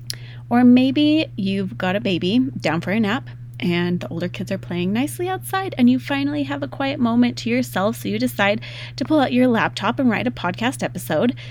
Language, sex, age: English, female, 30-49